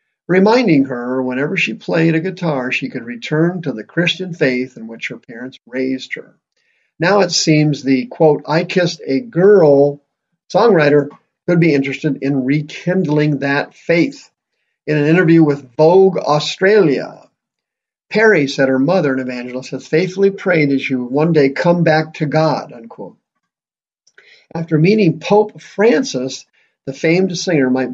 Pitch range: 135-175 Hz